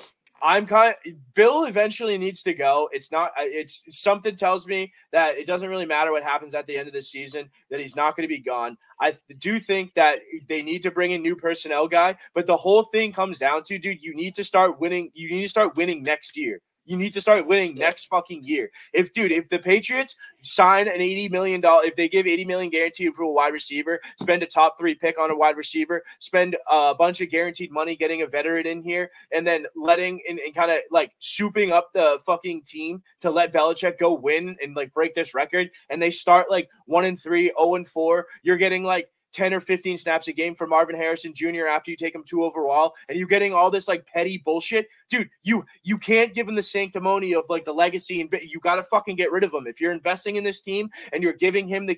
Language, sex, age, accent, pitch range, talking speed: English, male, 20-39, American, 165-205 Hz, 230 wpm